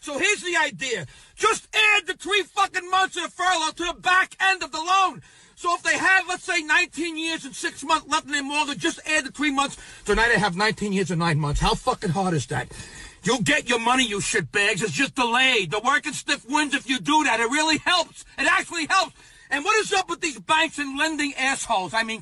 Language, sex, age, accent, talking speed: English, male, 50-69, American, 240 wpm